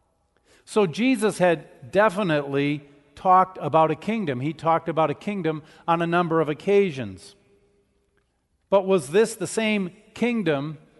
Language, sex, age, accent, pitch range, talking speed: English, male, 50-69, American, 145-190 Hz, 130 wpm